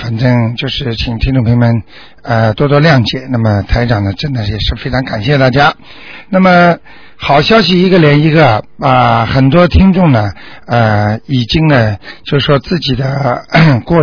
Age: 60-79